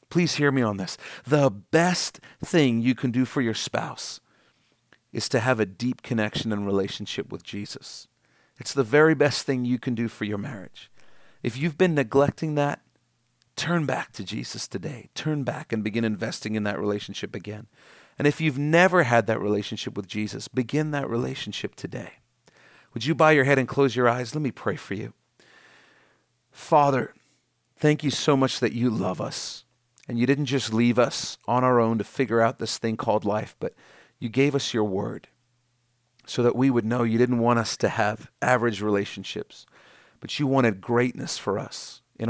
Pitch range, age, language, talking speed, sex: 115-135 Hz, 40-59, English, 185 wpm, male